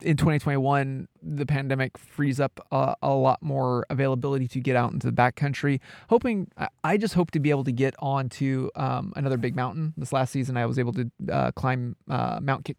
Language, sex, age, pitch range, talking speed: English, male, 20-39, 130-155 Hz, 210 wpm